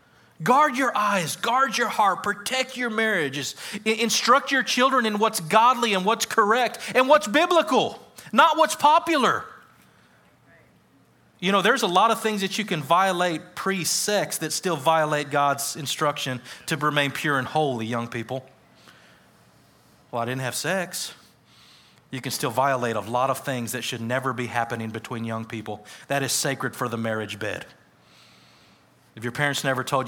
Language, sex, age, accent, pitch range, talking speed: English, male, 30-49, American, 125-195 Hz, 160 wpm